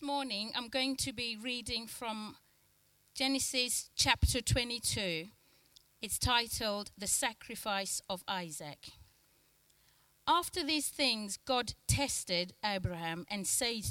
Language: English